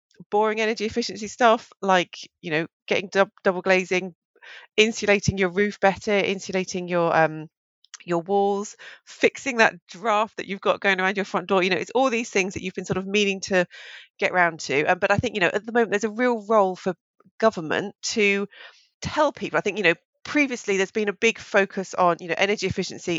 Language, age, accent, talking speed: English, 40-59, British, 210 wpm